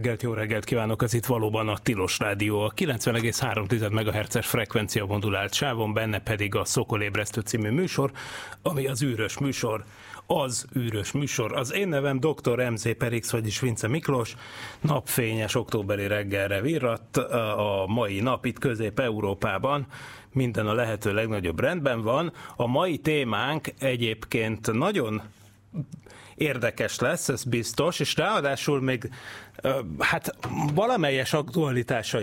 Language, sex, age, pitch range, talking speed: Hungarian, male, 30-49, 110-135 Hz, 125 wpm